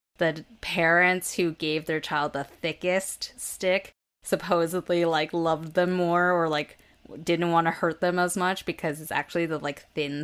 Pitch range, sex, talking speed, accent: 150-185 Hz, female, 170 wpm, American